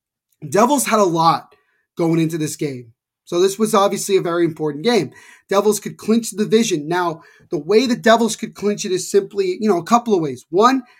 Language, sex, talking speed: English, male, 205 wpm